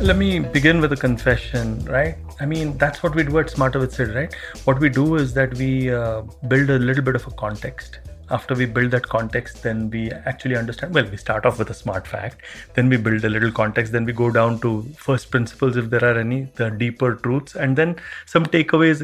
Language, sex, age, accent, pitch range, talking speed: English, male, 30-49, Indian, 120-145 Hz, 230 wpm